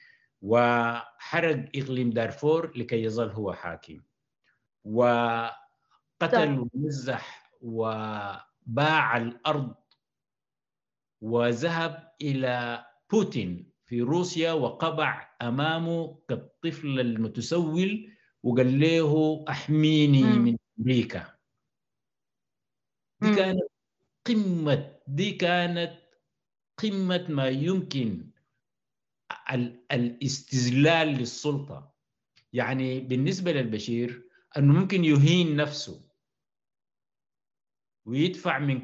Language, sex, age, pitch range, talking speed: Arabic, male, 60-79, 120-165 Hz, 70 wpm